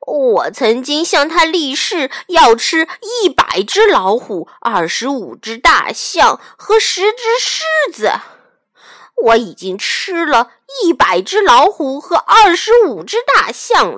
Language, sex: Chinese, female